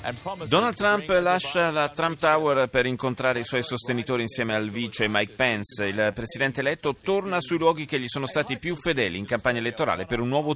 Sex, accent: male, native